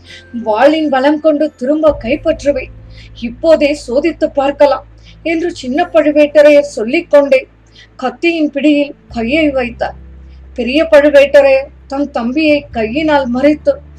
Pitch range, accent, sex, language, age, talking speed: 260-305 Hz, native, female, Tamil, 20-39, 100 wpm